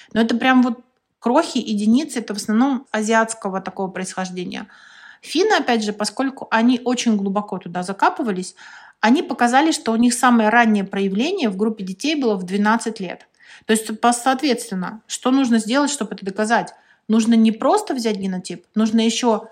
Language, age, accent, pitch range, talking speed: Russian, 30-49, native, 195-235 Hz, 160 wpm